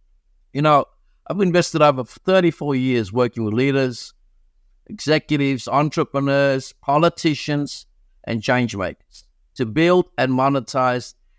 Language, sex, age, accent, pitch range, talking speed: English, male, 60-79, South African, 120-165 Hz, 105 wpm